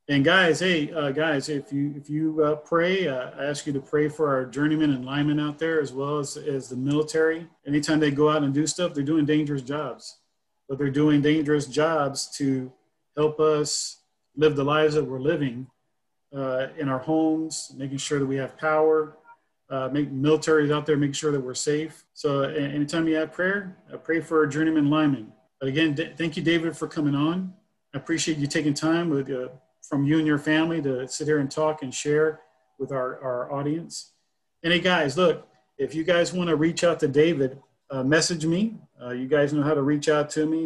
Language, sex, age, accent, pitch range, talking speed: English, male, 40-59, American, 135-155 Hz, 215 wpm